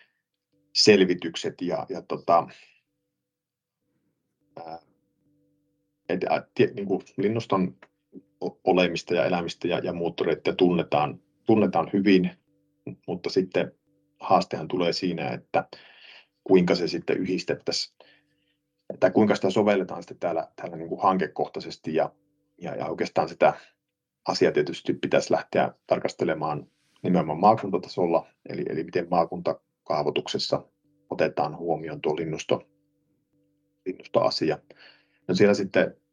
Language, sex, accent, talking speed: Finnish, male, native, 100 wpm